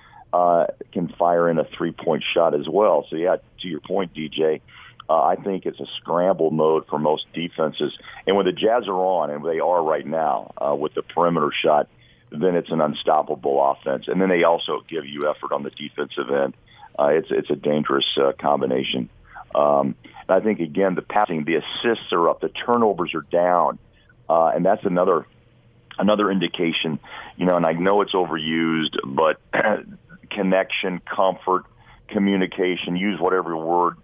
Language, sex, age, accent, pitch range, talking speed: English, male, 50-69, American, 75-90 Hz, 175 wpm